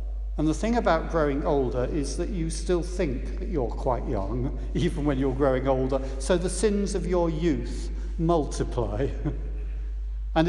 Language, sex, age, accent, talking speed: English, male, 60-79, British, 160 wpm